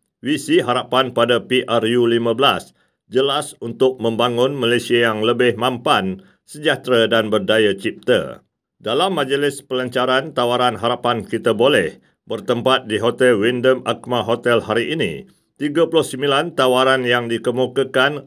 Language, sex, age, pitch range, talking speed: Malay, male, 50-69, 115-135 Hz, 110 wpm